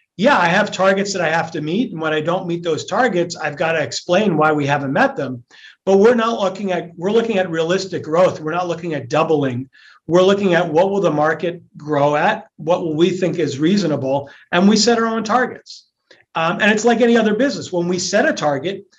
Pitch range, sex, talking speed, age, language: 160-195 Hz, male, 230 wpm, 40-59, English